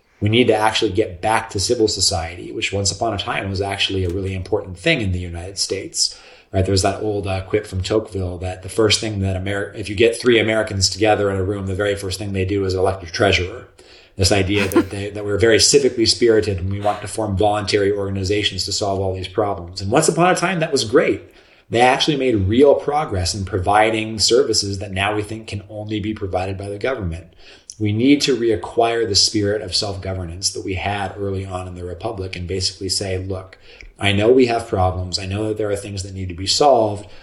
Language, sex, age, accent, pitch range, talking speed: English, male, 30-49, American, 95-105 Hz, 225 wpm